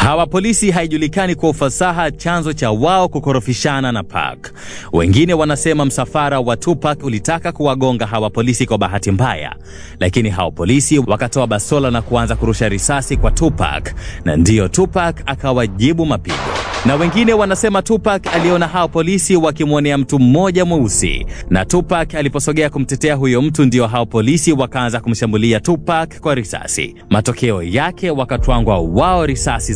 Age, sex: 30-49, male